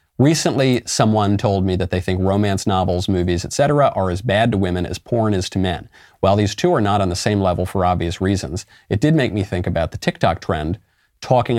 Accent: American